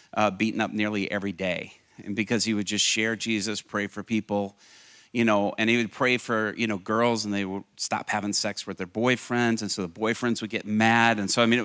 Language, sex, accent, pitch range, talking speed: English, male, American, 105-115 Hz, 240 wpm